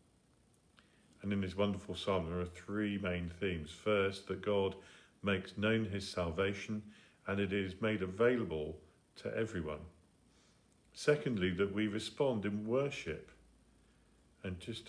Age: 50-69